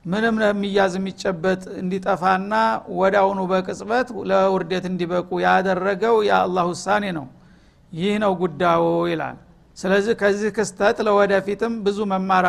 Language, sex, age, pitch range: Amharic, male, 60-79, 180-205 Hz